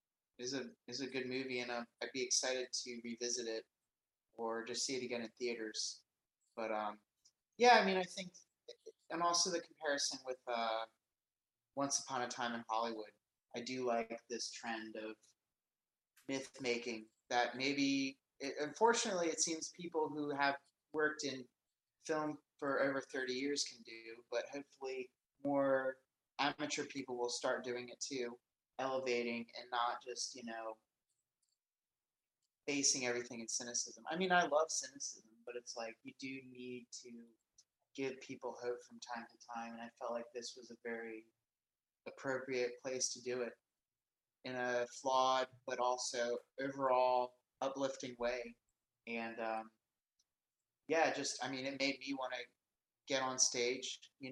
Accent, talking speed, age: American, 155 wpm, 30-49